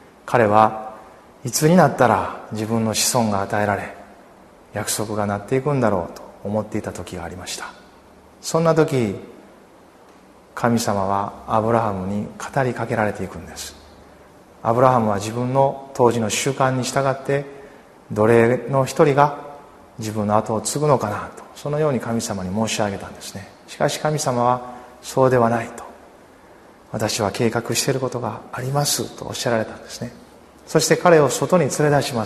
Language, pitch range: Japanese, 105-135 Hz